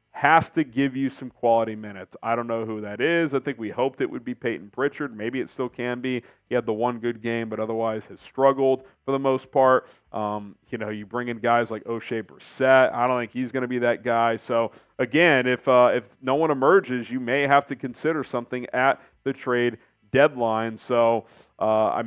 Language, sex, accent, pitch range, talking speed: English, male, American, 115-150 Hz, 220 wpm